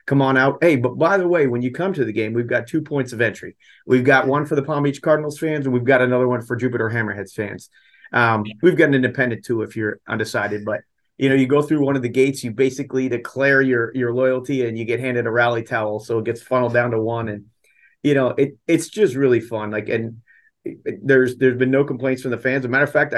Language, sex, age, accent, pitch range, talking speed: English, male, 40-59, American, 115-135 Hz, 265 wpm